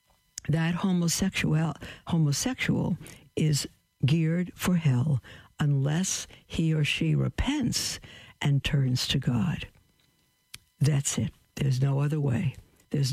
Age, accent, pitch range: 60-79, American, 125-155 Hz